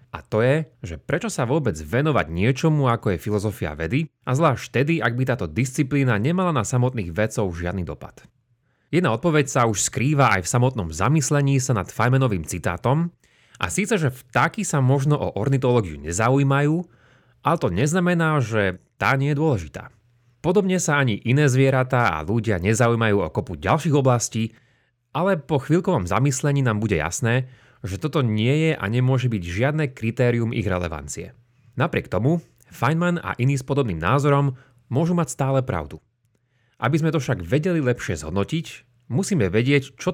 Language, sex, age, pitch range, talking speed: Slovak, male, 30-49, 110-145 Hz, 160 wpm